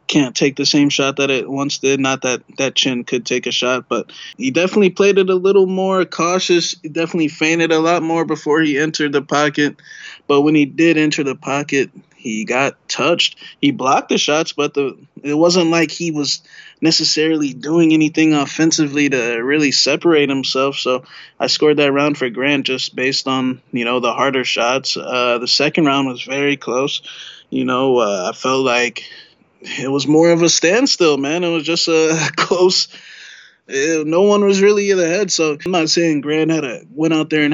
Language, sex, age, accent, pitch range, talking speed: English, male, 20-39, American, 135-165 Hz, 200 wpm